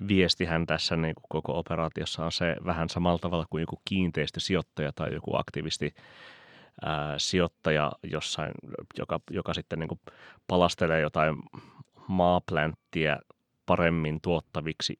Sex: male